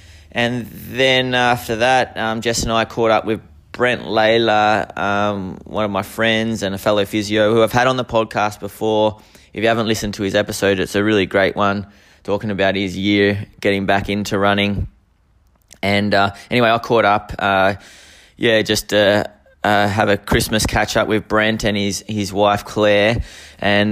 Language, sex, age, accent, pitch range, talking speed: English, male, 20-39, Australian, 100-110 Hz, 185 wpm